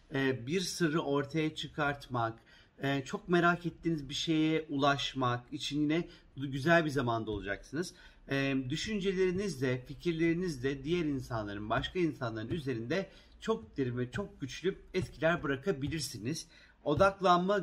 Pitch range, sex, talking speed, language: 135-175 Hz, male, 105 wpm, Turkish